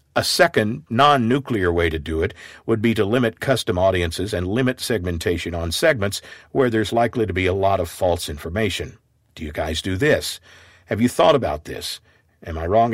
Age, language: 50-69, English